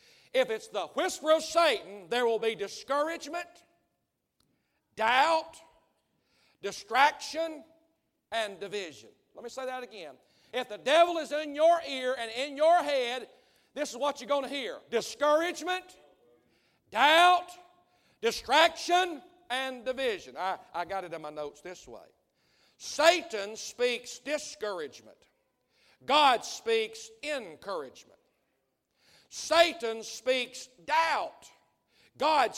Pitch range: 230-325 Hz